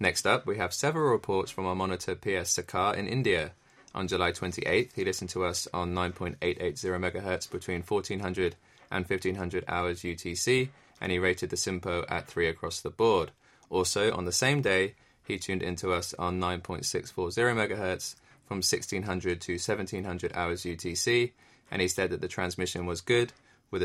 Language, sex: English, male